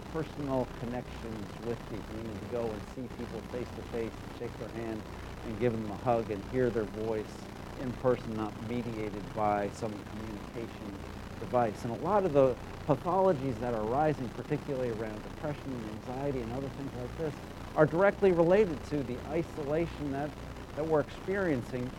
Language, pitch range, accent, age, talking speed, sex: English, 110-145 Hz, American, 50-69, 175 wpm, male